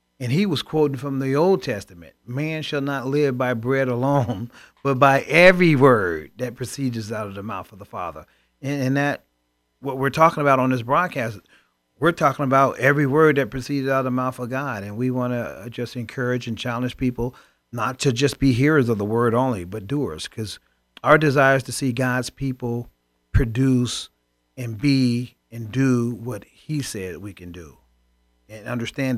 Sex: male